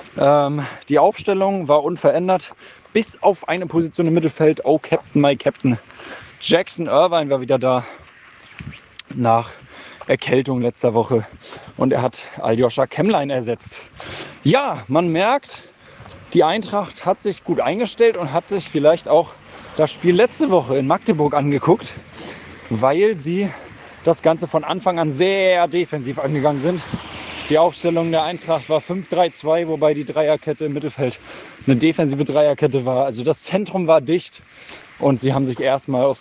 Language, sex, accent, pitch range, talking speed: German, male, German, 135-175 Hz, 145 wpm